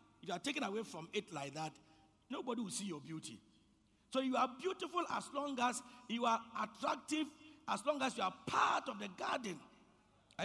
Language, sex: English, male